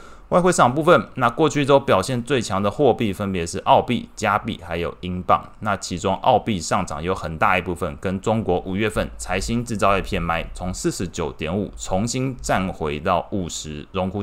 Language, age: Chinese, 20-39